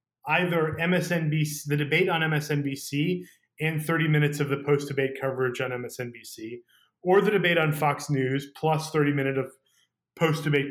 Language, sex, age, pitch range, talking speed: English, male, 30-49, 140-180 Hz, 145 wpm